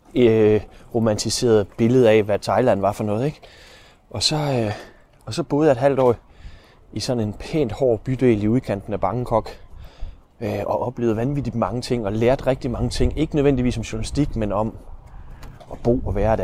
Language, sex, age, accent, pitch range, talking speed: Danish, male, 20-39, native, 105-130 Hz, 185 wpm